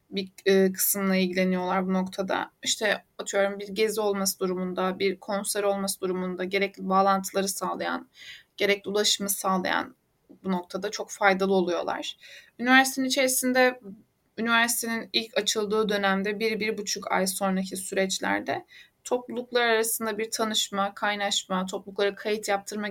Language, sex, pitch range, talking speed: Turkish, female, 195-230 Hz, 120 wpm